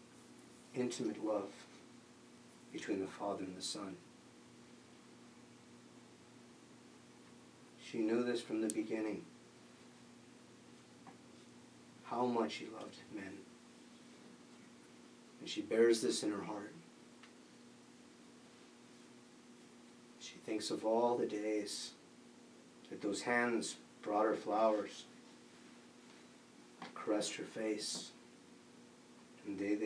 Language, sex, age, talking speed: English, male, 40-59, 85 wpm